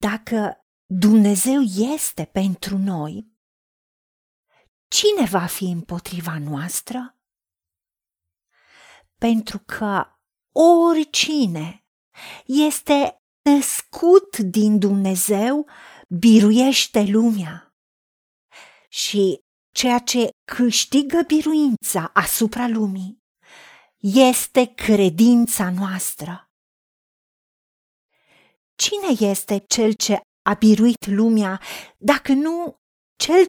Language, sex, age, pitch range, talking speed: Romanian, female, 40-59, 200-275 Hz, 70 wpm